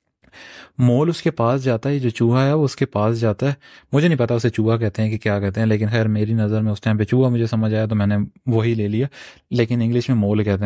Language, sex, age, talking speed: Urdu, male, 30-49, 120 wpm